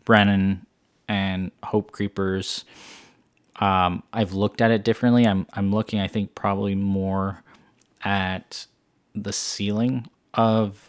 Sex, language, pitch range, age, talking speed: male, English, 95-105 Hz, 20-39, 115 wpm